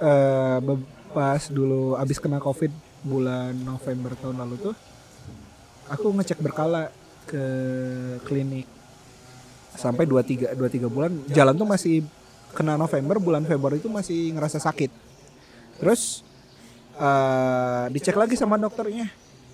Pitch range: 130-180 Hz